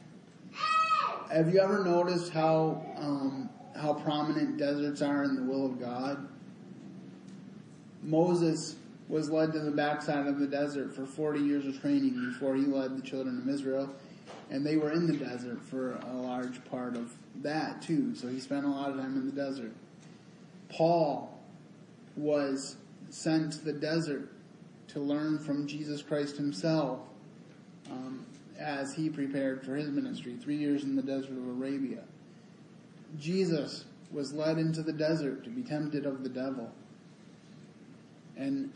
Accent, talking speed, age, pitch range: American, 150 wpm, 20-39, 135-160 Hz